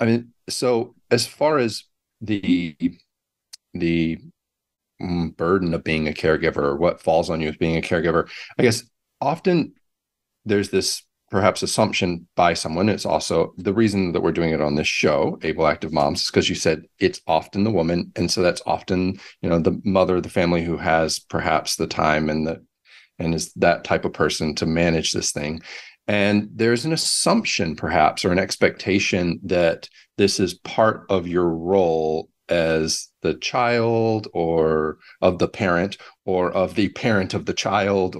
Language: English